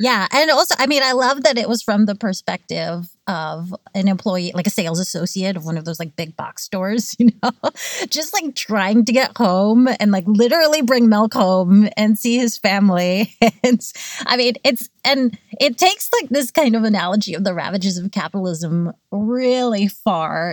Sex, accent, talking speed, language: female, American, 190 wpm, English